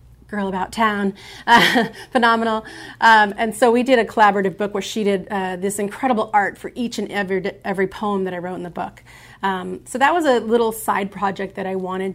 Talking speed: 205 wpm